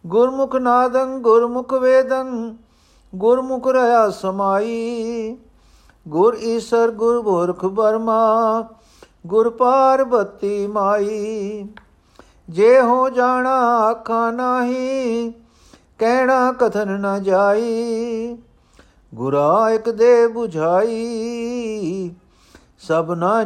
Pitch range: 160-230 Hz